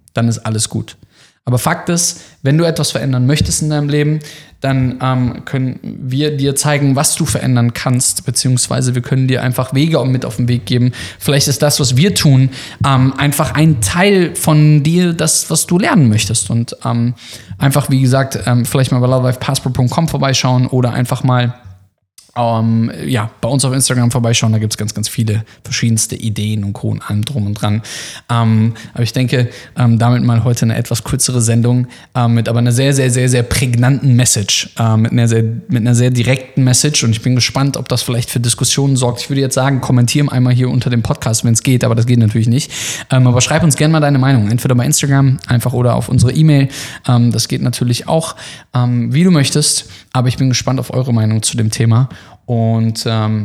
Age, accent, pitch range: 20-39, German, 115-135 Hz